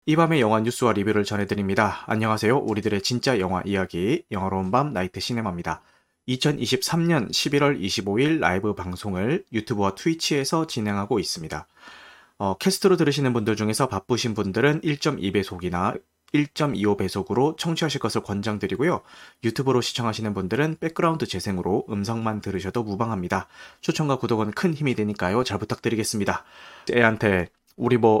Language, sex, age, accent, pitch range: Korean, male, 30-49, native, 100-145 Hz